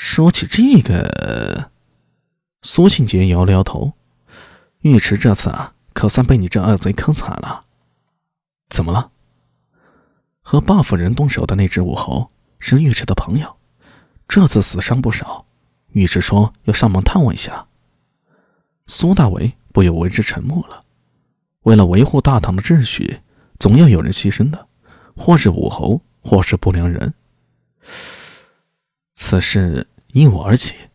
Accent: native